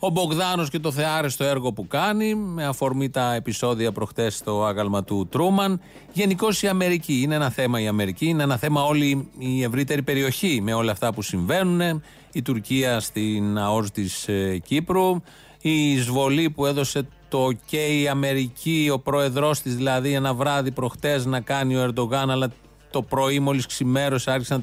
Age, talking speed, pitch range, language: 40-59, 165 wpm, 125-155 Hz, Greek